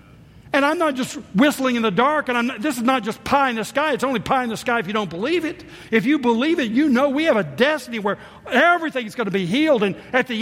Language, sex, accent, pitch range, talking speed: English, male, American, 145-240 Hz, 290 wpm